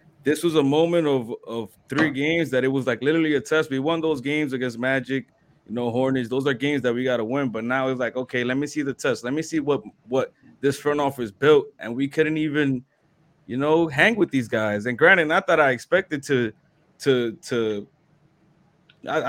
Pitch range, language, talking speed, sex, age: 130-160 Hz, English, 220 wpm, male, 20-39